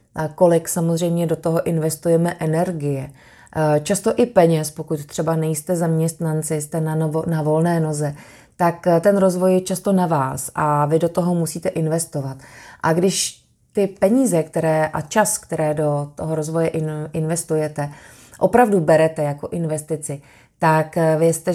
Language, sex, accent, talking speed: Czech, female, native, 145 wpm